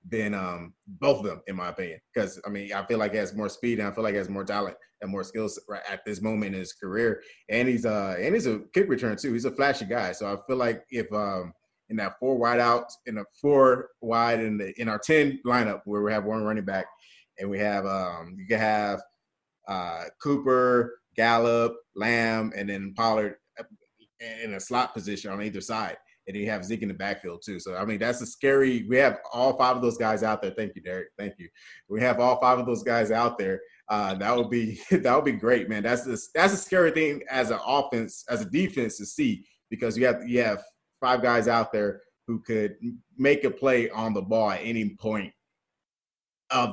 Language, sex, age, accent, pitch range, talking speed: English, male, 20-39, American, 105-125 Hz, 230 wpm